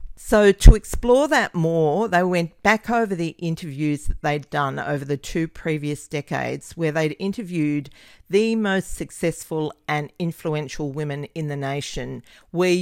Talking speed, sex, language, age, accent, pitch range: 150 wpm, female, English, 40-59, Australian, 150-200 Hz